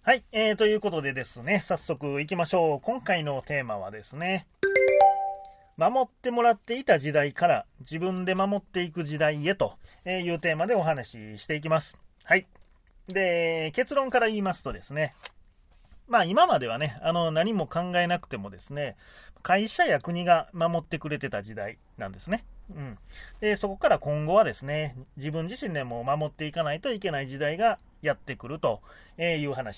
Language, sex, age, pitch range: Japanese, male, 30-49, 140-190 Hz